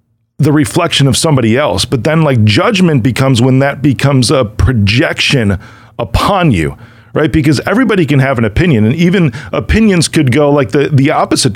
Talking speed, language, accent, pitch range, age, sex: 170 wpm, English, American, 115-150 Hz, 40-59, male